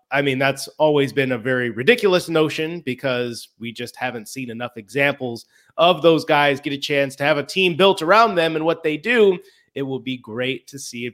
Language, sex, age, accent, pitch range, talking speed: English, male, 30-49, American, 130-155 Hz, 215 wpm